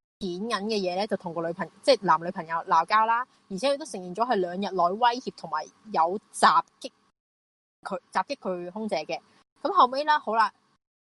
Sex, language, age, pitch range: female, Chinese, 20-39, 185-240 Hz